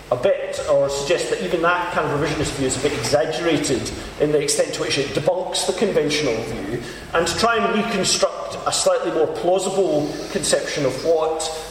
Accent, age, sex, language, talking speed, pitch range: British, 40-59, male, English, 190 wpm, 140-200 Hz